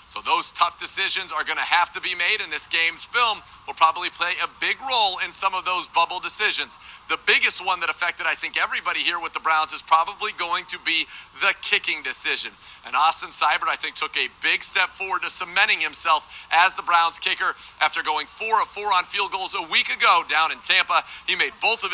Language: English